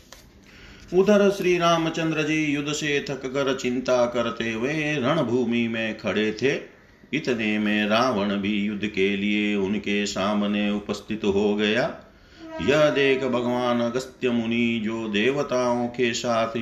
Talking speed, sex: 130 wpm, male